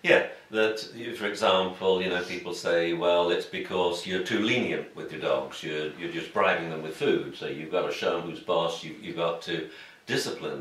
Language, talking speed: English, 210 wpm